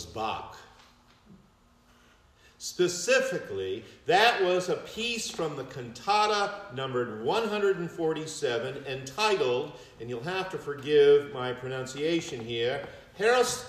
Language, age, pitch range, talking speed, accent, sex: English, 50-69, 145-210 Hz, 90 wpm, American, male